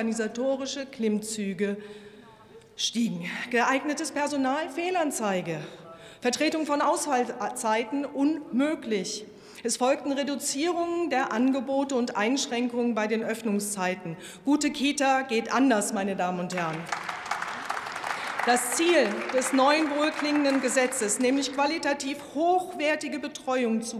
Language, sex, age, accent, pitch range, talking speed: German, female, 40-59, German, 225-290 Hz, 100 wpm